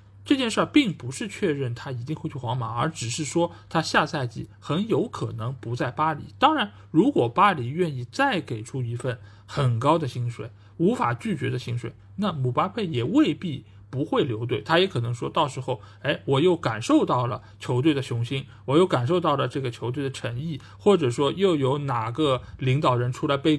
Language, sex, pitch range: Chinese, male, 120-155 Hz